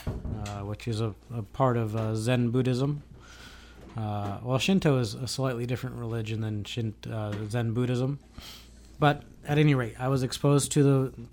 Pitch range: 110-140 Hz